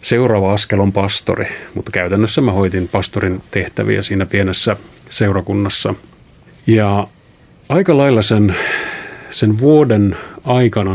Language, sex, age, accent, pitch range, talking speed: Finnish, male, 30-49, native, 100-120 Hz, 110 wpm